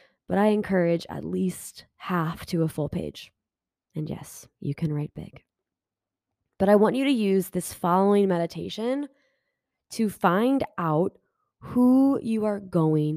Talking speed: 145 wpm